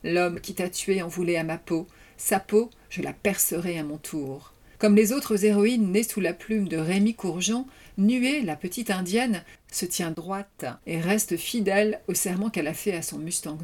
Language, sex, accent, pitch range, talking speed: French, female, French, 170-220 Hz, 200 wpm